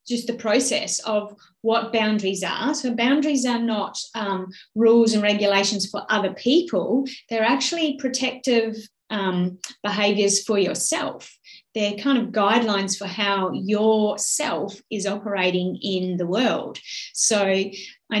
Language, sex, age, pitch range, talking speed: English, female, 30-49, 185-225 Hz, 130 wpm